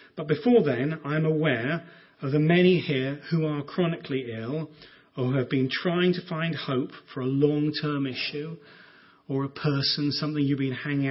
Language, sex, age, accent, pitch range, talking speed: English, male, 40-59, British, 125-155 Hz, 165 wpm